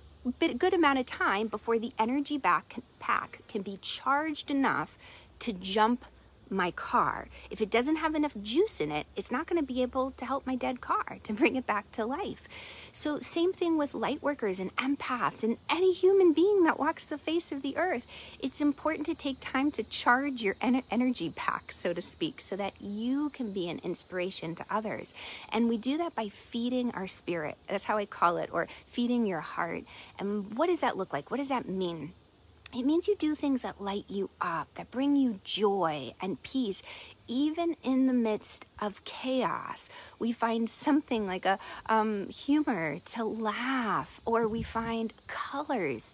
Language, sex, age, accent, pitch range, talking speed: English, female, 40-59, American, 210-285 Hz, 190 wpm